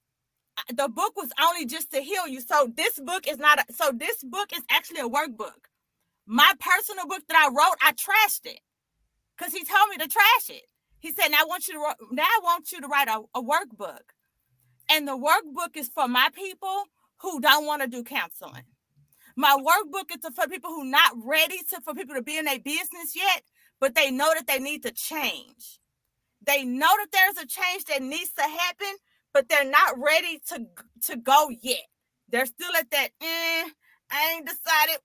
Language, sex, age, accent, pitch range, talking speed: English, female, 30-49, American, 265-340 Hz, 195 wpm